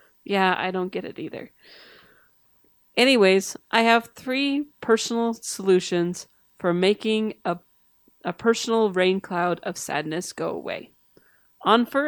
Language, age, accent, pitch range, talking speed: English, 40-59, American, 175-230 Hz, 125 wpm